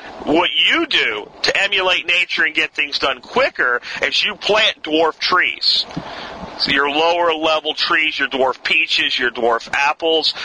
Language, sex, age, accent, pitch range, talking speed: English, male, 40-59, American, 155-190 Hz, 155 wpm